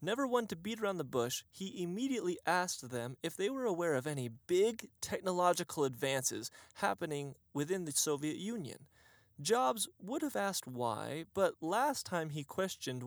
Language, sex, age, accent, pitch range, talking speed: English, male, 30-49, American, 130-205 Hz, 160 wpm